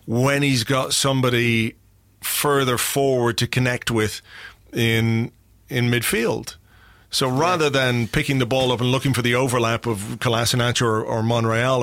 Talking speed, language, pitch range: 145 wpm, English, 115-140 Hz